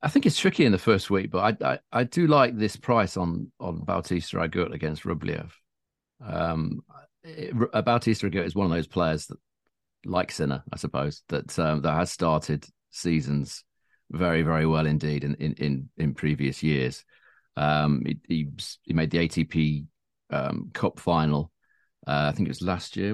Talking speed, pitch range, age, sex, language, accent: 175 wpm, 75-95 Hz, 40-59, male, English, British